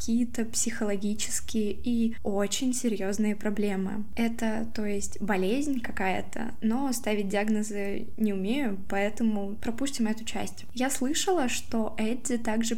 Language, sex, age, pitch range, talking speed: Russian, female, 20-39, 215-240 Hz, 115 wpm